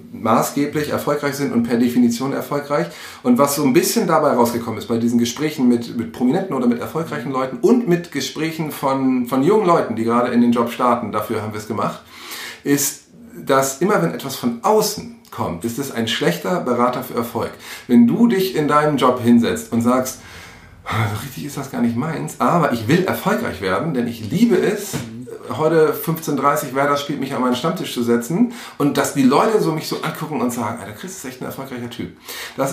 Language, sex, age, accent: German, male, 40-59, German